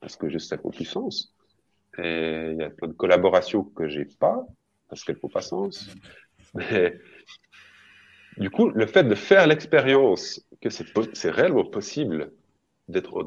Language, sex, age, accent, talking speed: French, male, 40-59, French, 175 wpm